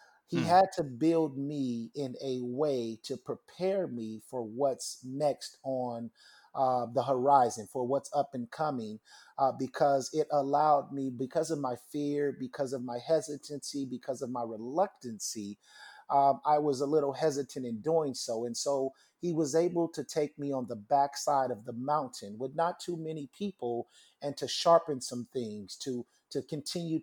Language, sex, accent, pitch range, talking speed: English, male, American, 130-155 Hz, 170 wpm